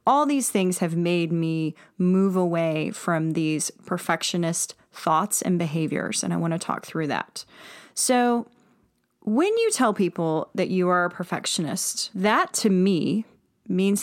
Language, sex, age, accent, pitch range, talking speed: English, female, 30-49, American, 170-210 Hz, 150 wpm